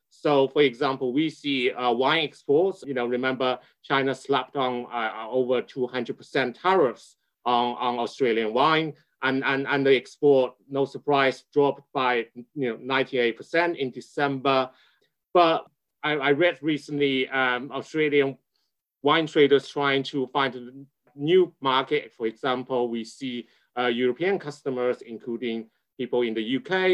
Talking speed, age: 140 wpm, 30-49